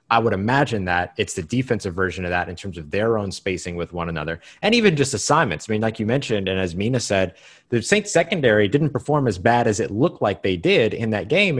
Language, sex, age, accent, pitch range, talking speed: English, male, 30-49, American, 95-130 Hz, 250 wpm